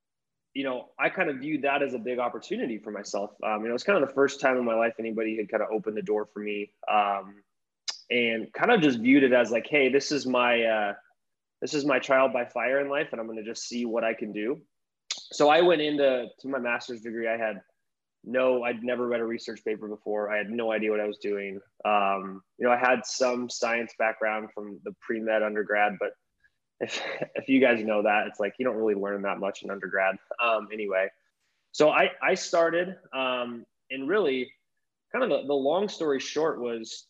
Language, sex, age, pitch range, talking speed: English, male, 20-39, 105-125 Hz, 225 wpm